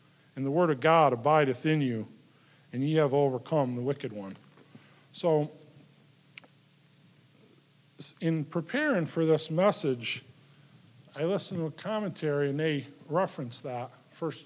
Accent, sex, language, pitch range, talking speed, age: American, male, English, 140-160 Hz, 130 wpm, 50-69